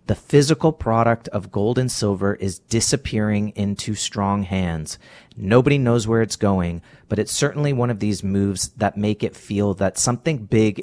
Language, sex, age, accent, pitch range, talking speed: English, male, 30-49, American, 95-115 Hz, 170 wpm